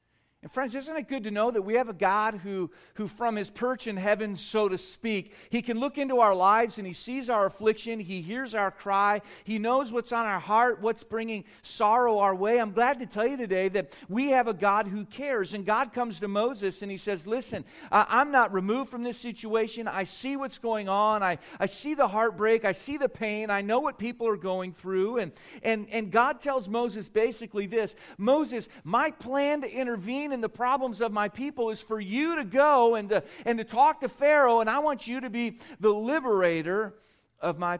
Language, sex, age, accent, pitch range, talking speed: English, male, 40-59, American, 180-235 Hz, 215 wpm